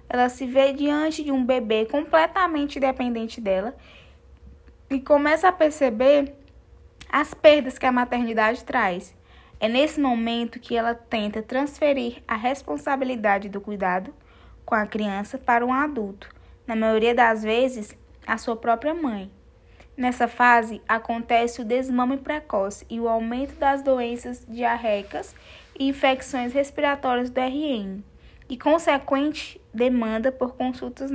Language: Portuguese